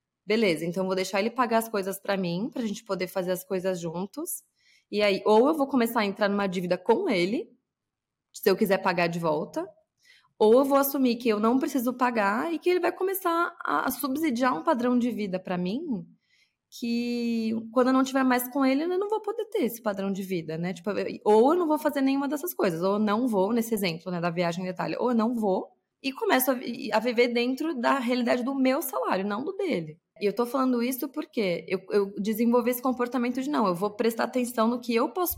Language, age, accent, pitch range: Portuguese, 20-39, Brazilian, 195-260 Hz